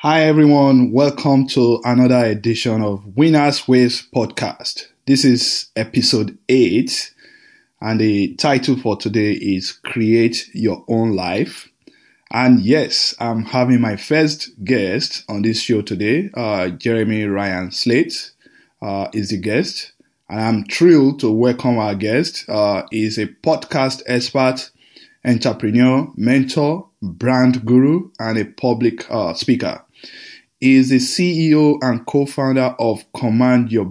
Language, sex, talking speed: English, male, 130 wpm